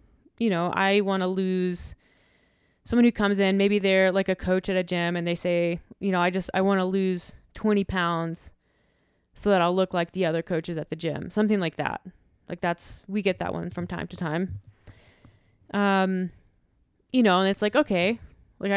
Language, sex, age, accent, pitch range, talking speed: English, female, 20-39, American, 175-200 Hz, 200 wpm